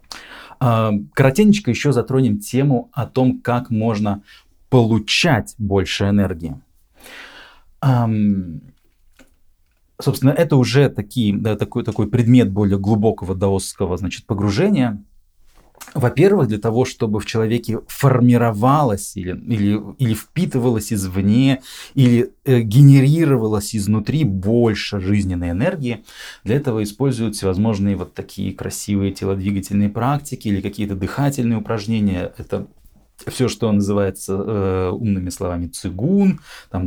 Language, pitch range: Russian, 100-130 Hz